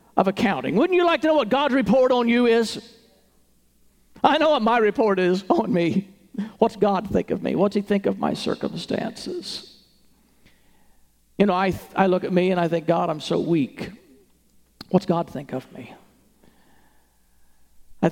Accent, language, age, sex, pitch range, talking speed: American, English, 50-69, male, 165-210 Hz, 170 wpm